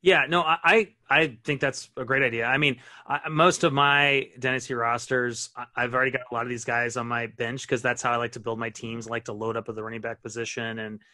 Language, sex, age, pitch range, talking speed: English, male, 30-49, 120-145 Hz, 260 wpm